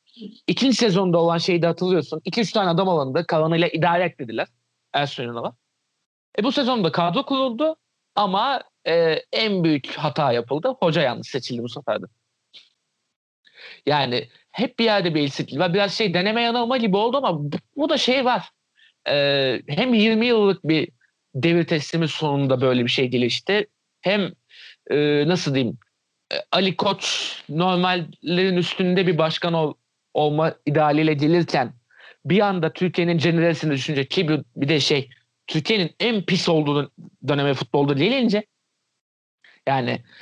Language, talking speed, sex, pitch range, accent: Turkish, 145 wpm, male, 150-195 Hz, native